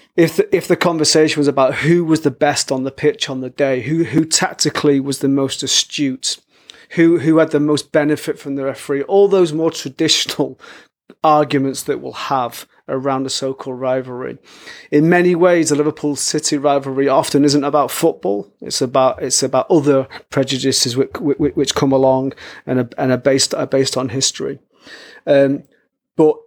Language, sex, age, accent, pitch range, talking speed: English, male, 30-49, British, 135-150 Hz, 175 wpm